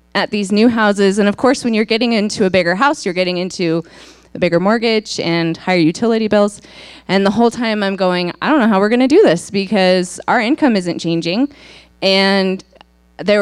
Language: English